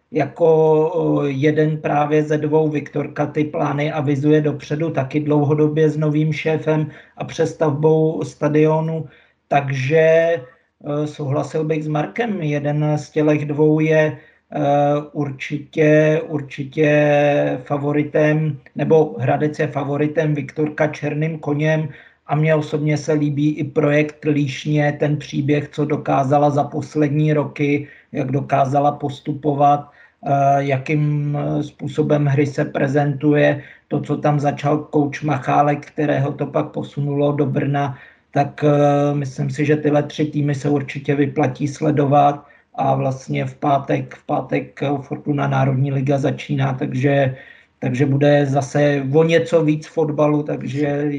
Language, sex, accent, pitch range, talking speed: Czech, male, native, 145-155 Hz, 120 wpm